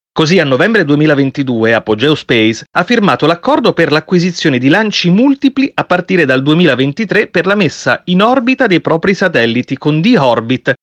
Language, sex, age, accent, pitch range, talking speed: Italian, male, 30-49, native, 125-175 Hz, 155 wpm